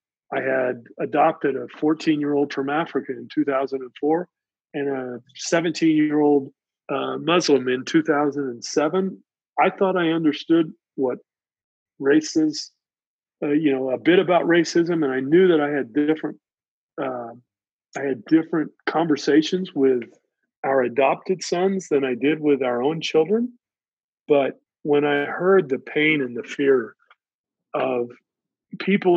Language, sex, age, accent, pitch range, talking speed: English, male, 40-59, American, 130-165 Hz, 150 wpm